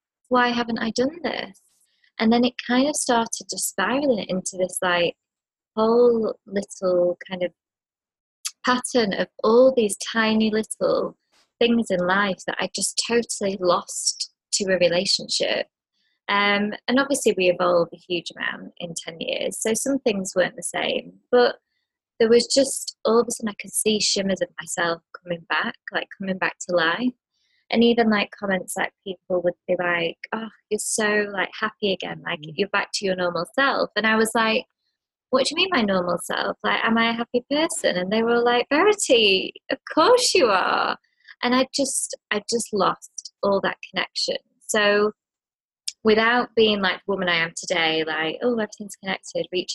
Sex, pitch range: female, 180-245 Hz